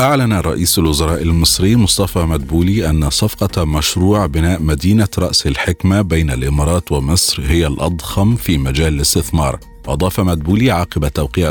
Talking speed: 130 wpm